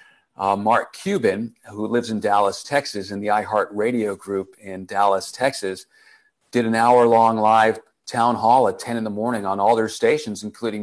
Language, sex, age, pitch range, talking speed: English, male, 40-59, 105-130 Hz, 170 wpm